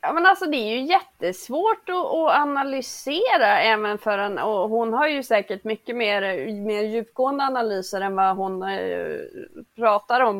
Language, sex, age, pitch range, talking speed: Swedish, female, 30-49, 195-280 Hz, 155 wpm